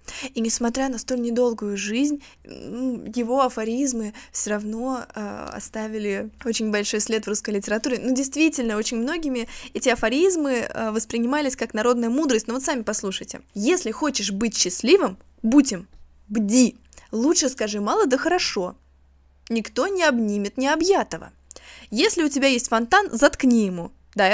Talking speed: 140 wpm